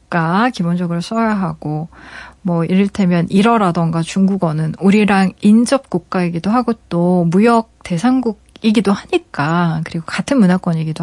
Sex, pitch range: female, 170-225 Hz